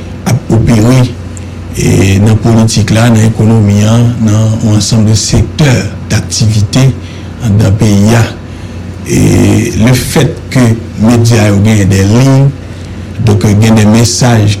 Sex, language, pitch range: male, English, 100-120 Hz